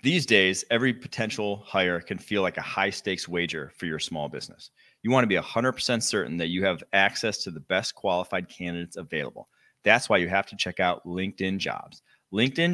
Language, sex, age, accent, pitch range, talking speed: English, male, 30-49, American, 90-115 Hz, 200 wpm